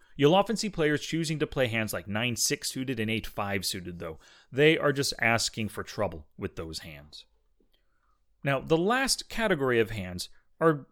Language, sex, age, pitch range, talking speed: English, male, 30-49, 115-180 Hz, 170 wpm